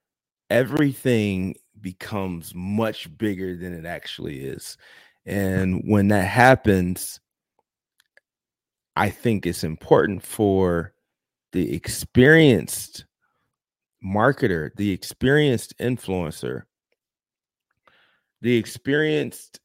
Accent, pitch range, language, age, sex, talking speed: American, 95-120 Hz, English, 30-49, male, 75 wpm